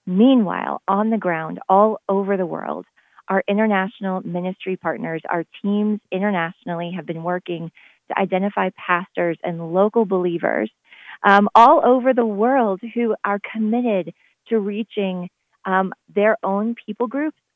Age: 30-49